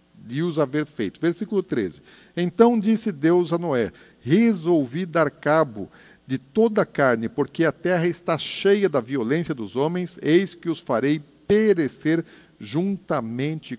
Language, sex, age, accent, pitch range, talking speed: Portuguese, male, 50-69, Brazilian, 140-180 Hz, 145 wpm